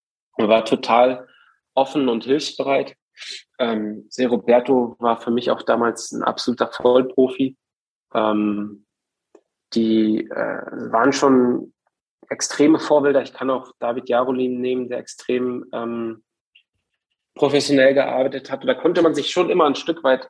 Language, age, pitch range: German, 20-39, 115-140 Hz